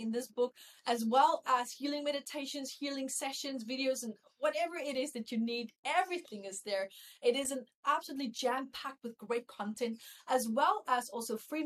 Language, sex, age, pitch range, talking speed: English, female, 30-49, 225-275 Hz, 170 wpm